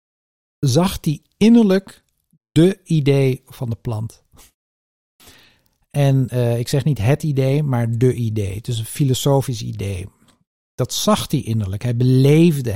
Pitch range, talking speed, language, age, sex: 115-140 Hz, 135 wpm, Dutch, 50-69, male